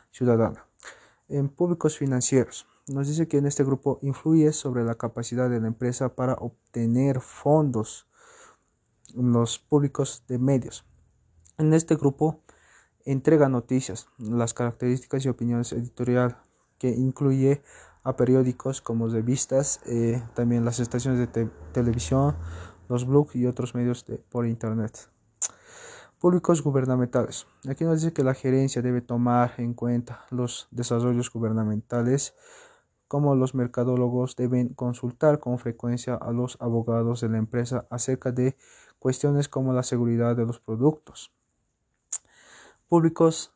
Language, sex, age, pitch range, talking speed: Spanish, male, 20-39, 120-135 Hz, 130 wpm